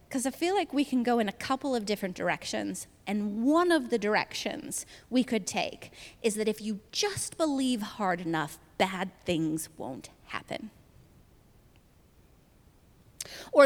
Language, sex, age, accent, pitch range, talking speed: English, female, 20-39, American, 210-295 Hz, 150 wpm